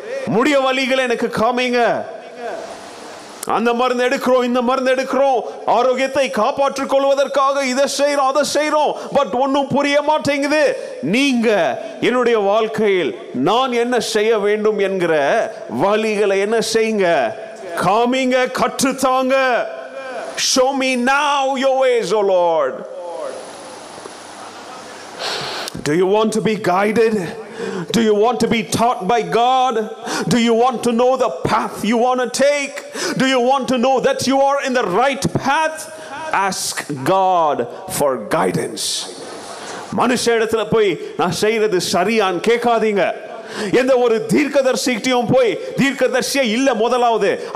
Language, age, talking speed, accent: Tamil, 30-49, 80 wpm, native